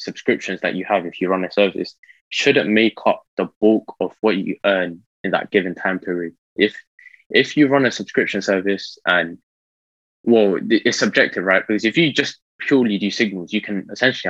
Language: English